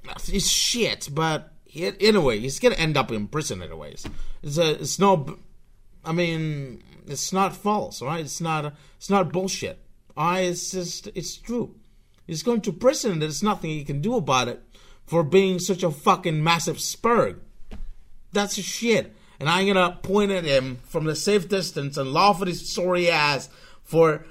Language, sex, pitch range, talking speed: English, male, 110-180 Hz, 175 wpm